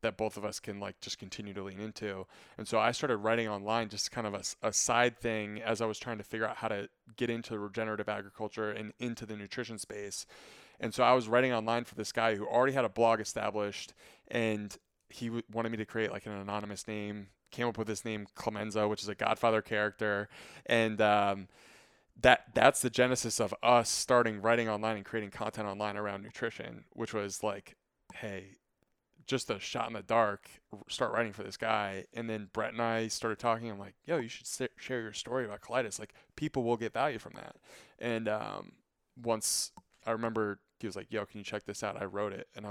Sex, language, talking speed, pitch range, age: male, English, 215 wpm, 105-115 Hz, 20-39